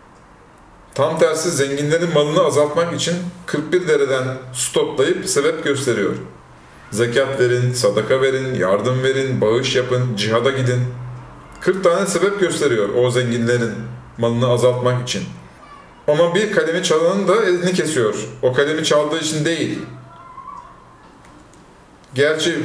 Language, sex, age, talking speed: Turkish, male, 40-59, 115 wpm